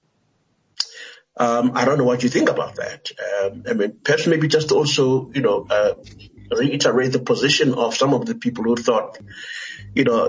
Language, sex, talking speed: English, male, 180 wpm